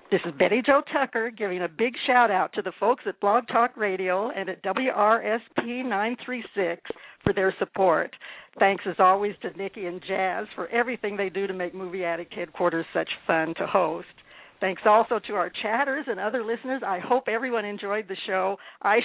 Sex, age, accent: female, 60-79, American